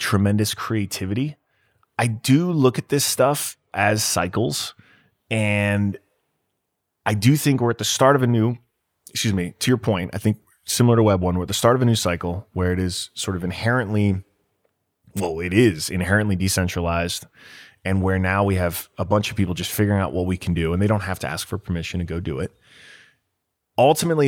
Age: 20-39